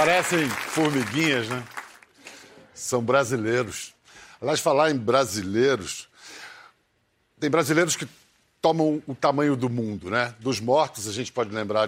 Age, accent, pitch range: 60-79, Brazilian, 115-155 Hz